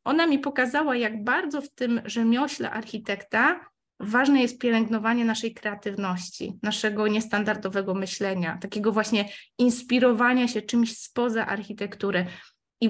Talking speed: 115 wpm